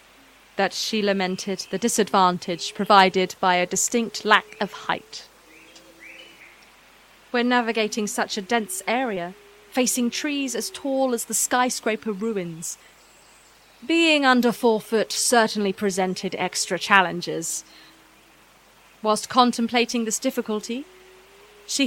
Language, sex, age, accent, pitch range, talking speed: English, female, 30-49, British, 190-240 Hz, 105 wpm